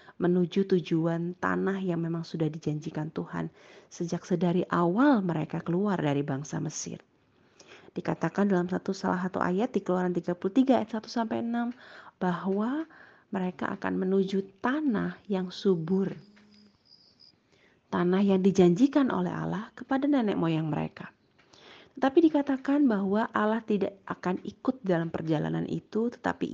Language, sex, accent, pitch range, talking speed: Indonesian, female, native, 170-220 Hz, 120 wpm